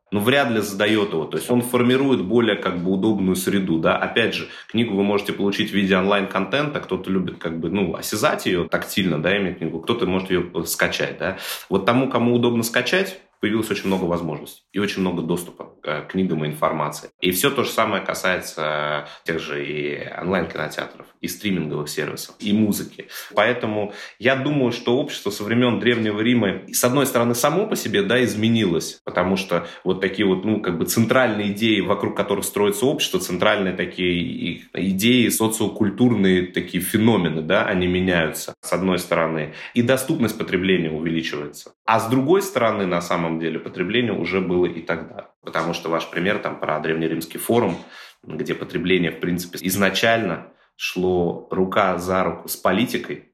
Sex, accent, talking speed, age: male, native, 170 wpm, 30-49